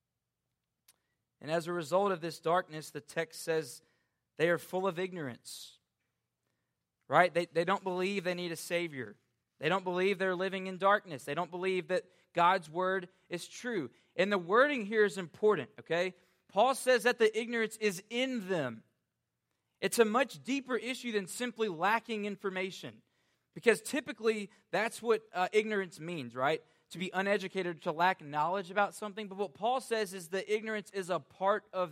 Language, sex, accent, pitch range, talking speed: English, male, American, 155-200 Hz, 170 wpm